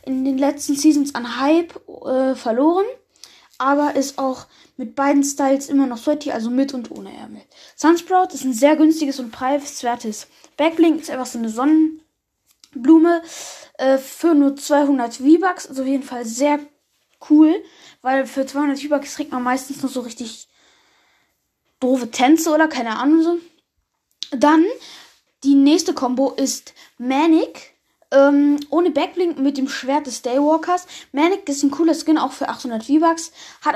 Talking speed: 155 wpm